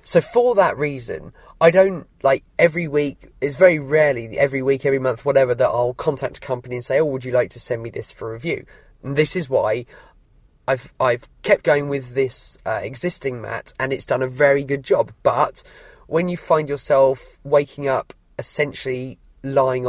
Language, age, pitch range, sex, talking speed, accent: English, 20-39, 125-155 Hz, male, 190 wpm, British